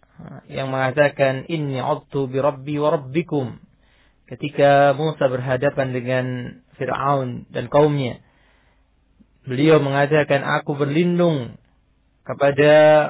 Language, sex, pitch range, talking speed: English, male, 125-150 Hz, 70 wpm